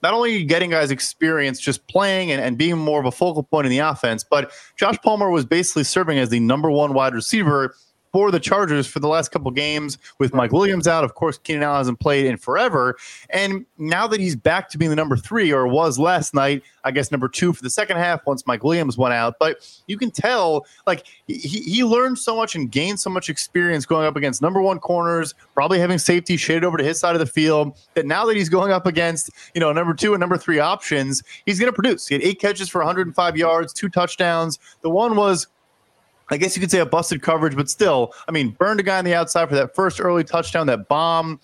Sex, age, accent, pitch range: male, 20-39, American, 150-185 Hz